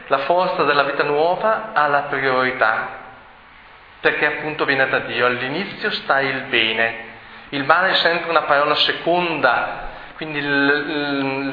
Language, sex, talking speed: Italian, male, 135 wpm